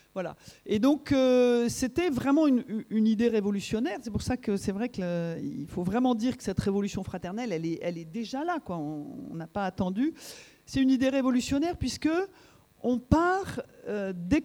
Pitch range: 195-265 Hz